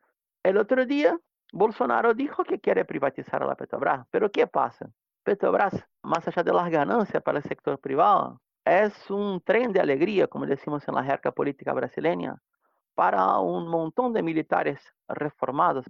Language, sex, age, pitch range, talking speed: Spanish, male, 30-49, 140-215 Hz, 160 wpm